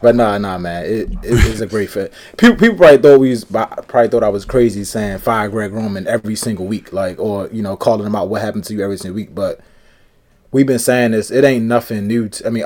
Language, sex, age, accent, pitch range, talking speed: English, male, 20-39, American, 110-130 Hz, 255 wpm